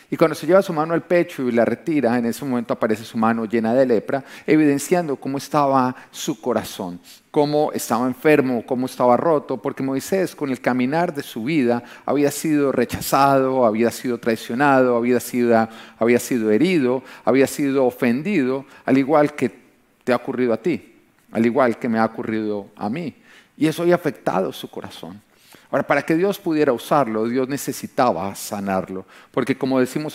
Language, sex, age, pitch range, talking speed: Romanian, male, 40-59, 115-155 Hz, 175 wpm